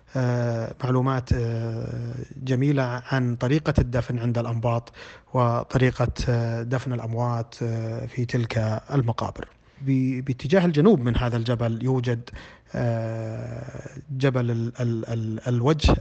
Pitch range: 115-135 Hz